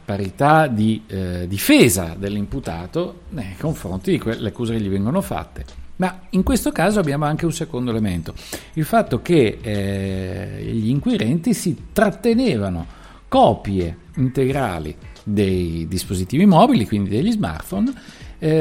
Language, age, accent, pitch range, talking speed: Italian, 50-69, native, 95-145 Hz, 130 wpm